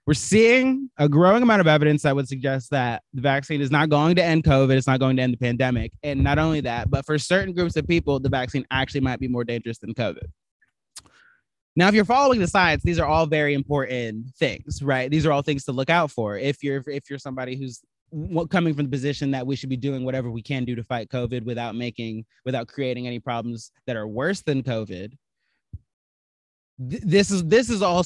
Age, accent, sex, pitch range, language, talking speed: 20-39, American, male, 125-155 Hz, English, 220 wpm